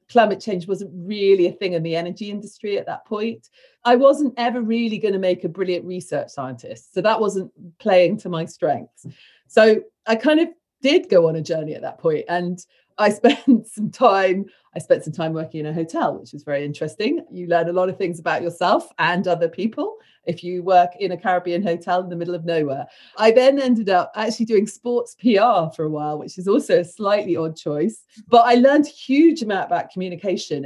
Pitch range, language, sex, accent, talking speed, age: 175-240 Hz, English, female, British, 210 wpm, 40-59